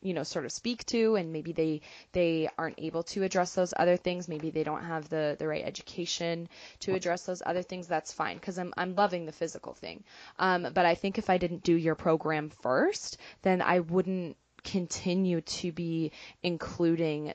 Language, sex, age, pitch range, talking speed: English, female, 20-39, 160-185 Hz, 195 wpm